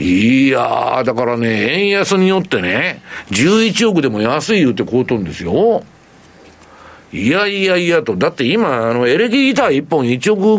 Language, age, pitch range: Japanese, 50-69, 125-205 Hz